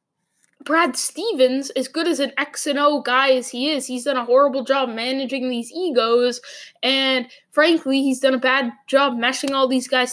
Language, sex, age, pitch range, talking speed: English, female, 10-29, 250-300 Hz, 190 wpm